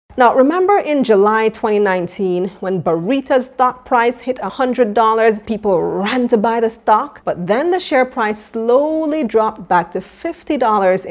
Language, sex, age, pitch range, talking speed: English, female, 30-49, 175-245 Hz, 145 wpm